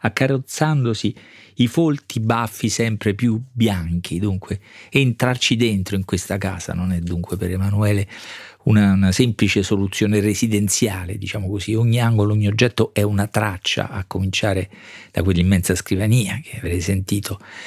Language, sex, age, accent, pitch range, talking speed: Italian, male, 40-59, native, 95-115 Hz, 135 wpm